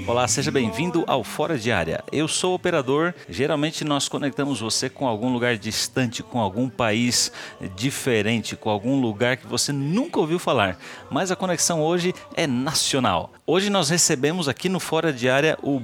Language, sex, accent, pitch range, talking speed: Portuguese, male, Brazilian, 125-165 Hz, 175 wpm